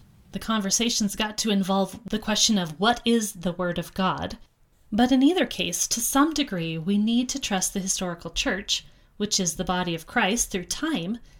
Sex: female